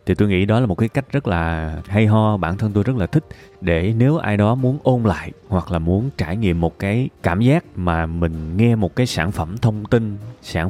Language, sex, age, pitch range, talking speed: Vietnamese, male, 20-39, 85-110 Hz, 245 wpm